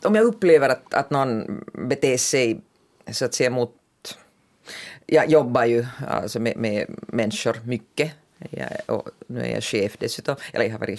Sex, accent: female, native